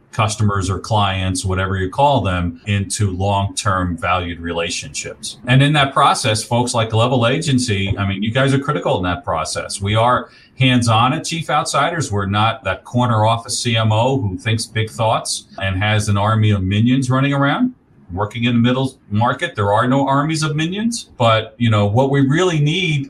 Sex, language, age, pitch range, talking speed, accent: male, English, 40-59, 105-135 Hz, 180 wpm, American